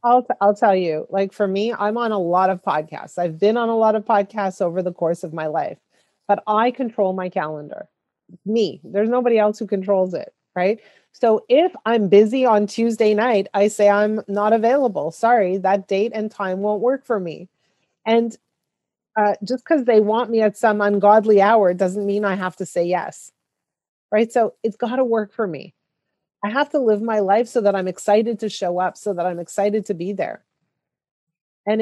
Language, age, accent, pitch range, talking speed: English, 30-49, American, 195-235 Hz, 205 wpm